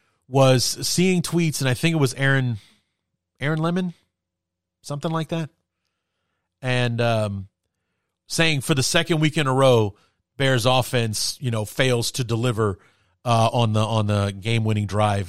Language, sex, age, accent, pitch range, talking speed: English, male, 30-49, American, 100-140 Hz, 150 wpm